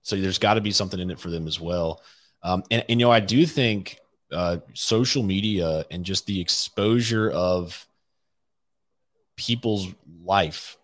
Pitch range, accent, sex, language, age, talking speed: 90-110 Hz, American, male, English, 30-49, 165 wpm